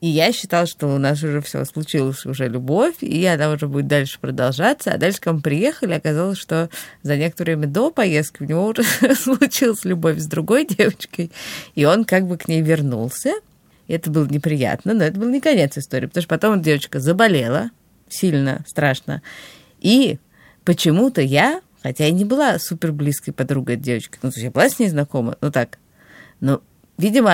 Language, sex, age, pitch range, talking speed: Russian, female, 30-49, 150-205 Hz, 185 wpm